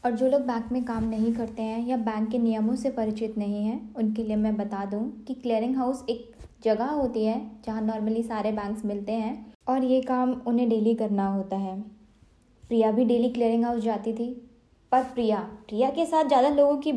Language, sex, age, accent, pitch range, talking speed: Hindi, female, 20-39, native, 210-250 Hz, 205 wpm